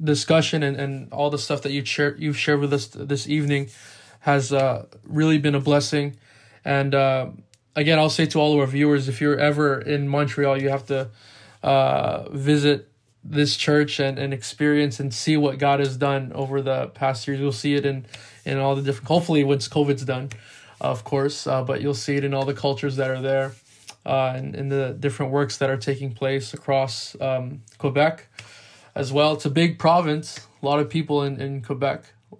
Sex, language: male, English